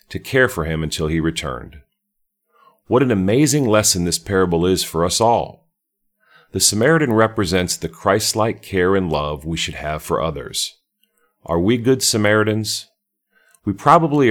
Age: 40-59